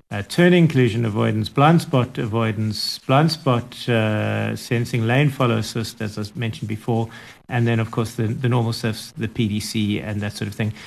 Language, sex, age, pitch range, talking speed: English, male, 50-69, 115-145 Hz, 180 wpm